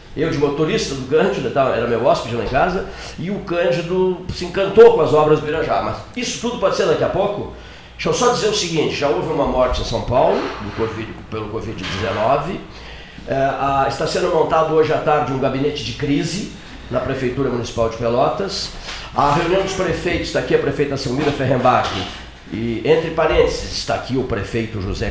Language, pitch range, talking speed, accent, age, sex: Portuguese, 115-155 Hz, 190 wpm, Brazilian, 50-69, male